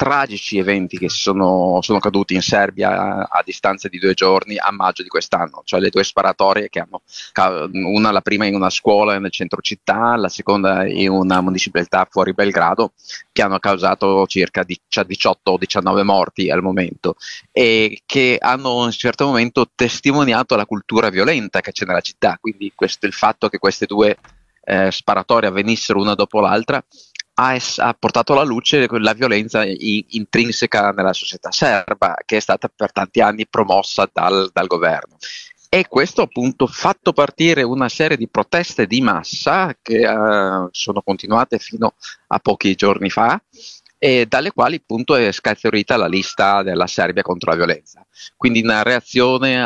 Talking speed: 160 wpm